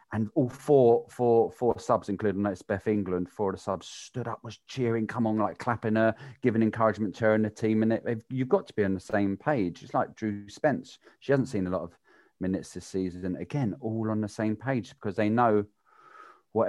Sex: male